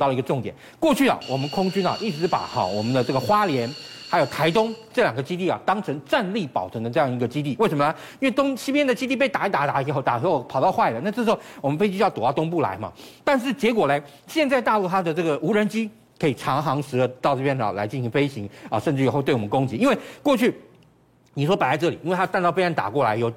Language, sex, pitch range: Chinese, male, 145-220 Hz